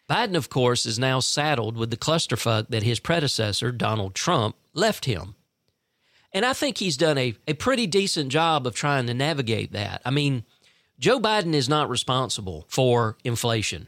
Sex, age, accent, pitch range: male, 40-59, American, 120-155 Hz